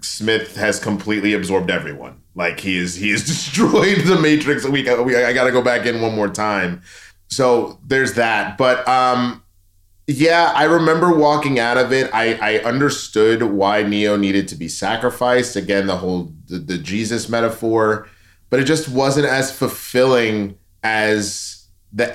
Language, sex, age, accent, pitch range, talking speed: English, male, 30-49, American, 100-135 Hz, 165 wpm